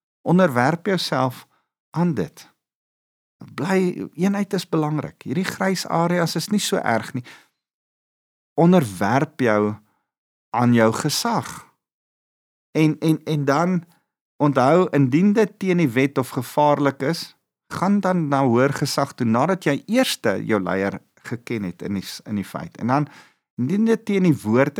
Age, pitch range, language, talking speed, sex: 50-69, 110-160 Hz, English, 140 wpm, male